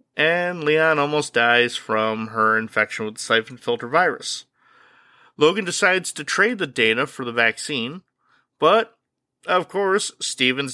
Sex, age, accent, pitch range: male, 30-49, American, 130-180 Hz